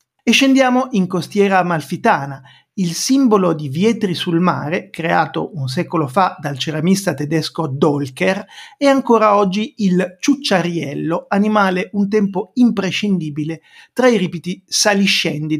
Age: 50-69